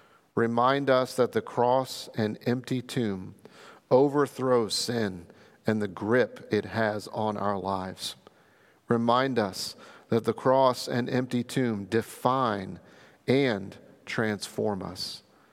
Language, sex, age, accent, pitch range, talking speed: English, male, 50-69, American, 105-125 Hz, 115 wpm